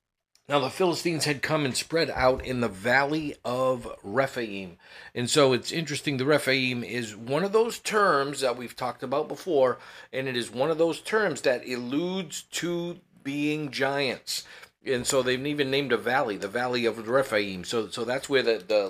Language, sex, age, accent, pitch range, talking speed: English, male, 50-69, American, 115-145 Hz, 185 wpm